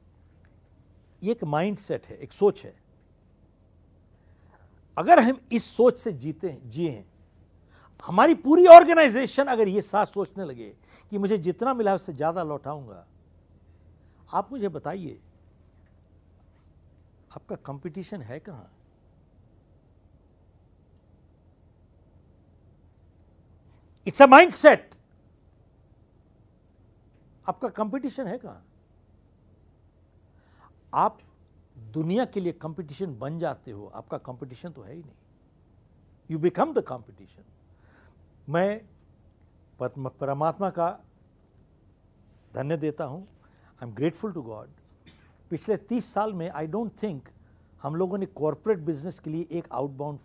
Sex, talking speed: male, 105 wpm